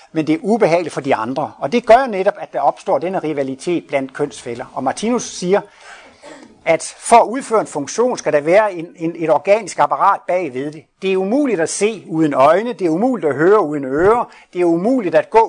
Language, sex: Danish, male